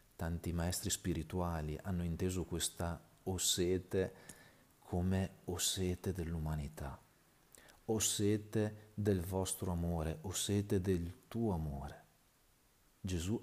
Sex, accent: male, native